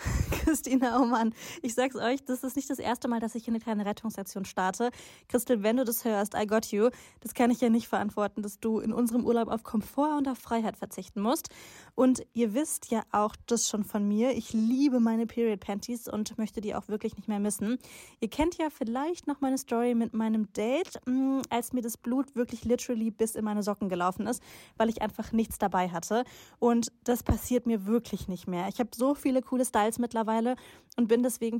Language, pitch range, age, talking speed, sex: German, 215-250 Hz, 10-29, 210 wpm, female